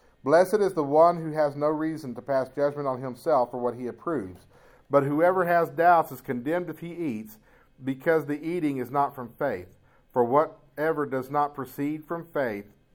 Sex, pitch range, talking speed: male, 155-205 Hz, 185 wpm